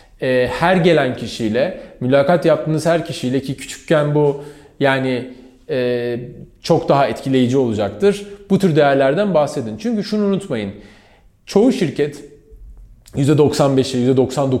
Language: Turkish